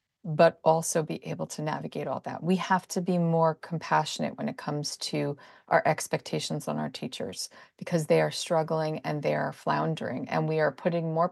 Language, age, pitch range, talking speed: English, 40-59, 160-190 Hz, 190 wpm